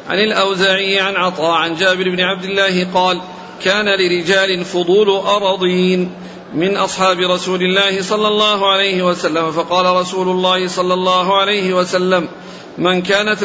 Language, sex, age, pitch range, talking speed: Arabic, male, 50-69, 185-195 Hz, 140 wpm